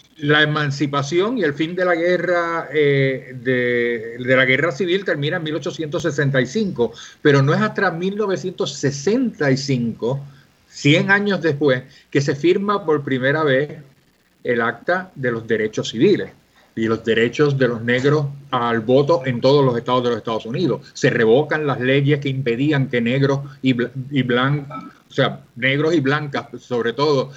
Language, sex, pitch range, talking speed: Spanish, male, 125-155 Hz, 160 wpm